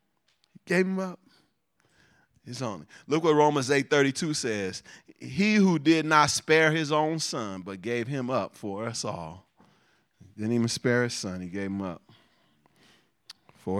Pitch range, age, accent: 90-125 Hz, 40-59, American